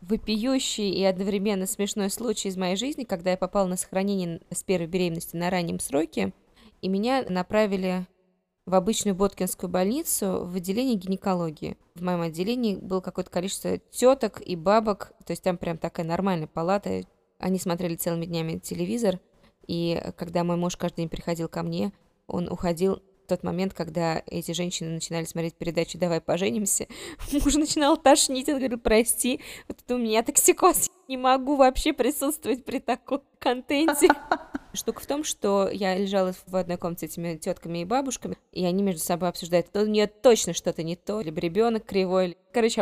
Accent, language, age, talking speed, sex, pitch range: native, Russian, 20-39, 170 wpm, female, 175-225 Hz